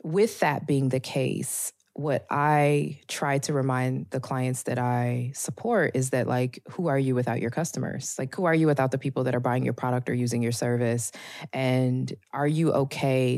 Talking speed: 195 wpm